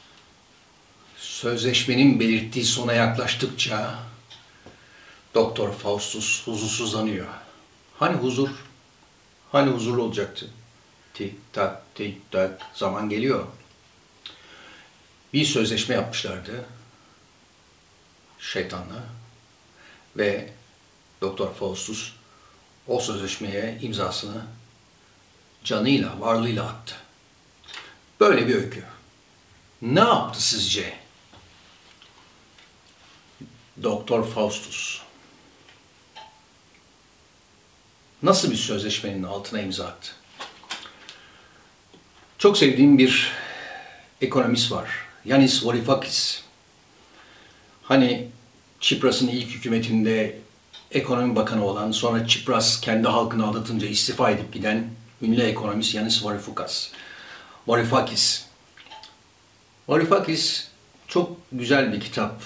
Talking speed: 75 wpm